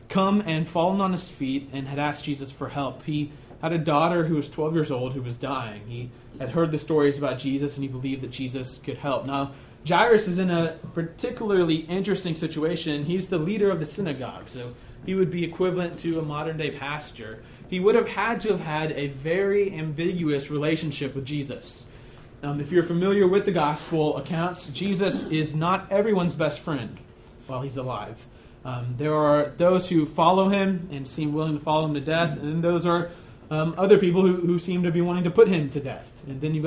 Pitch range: 135-170 Hz